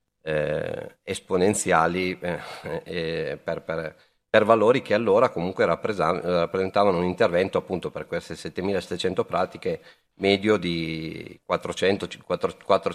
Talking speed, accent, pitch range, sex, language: 115 wpm, native, 95-135 Hz, male, Italian